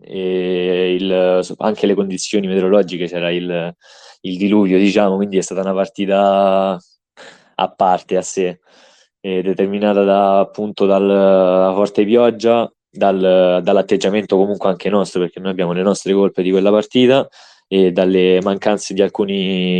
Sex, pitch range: male, 95-105 Hz